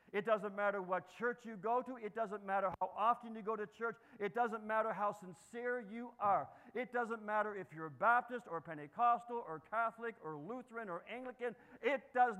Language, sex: English, male